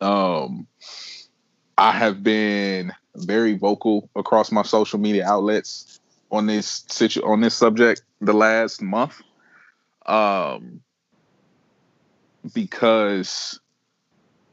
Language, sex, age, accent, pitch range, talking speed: English, male, 20-39, American, 90-110 Hz, 90 wpm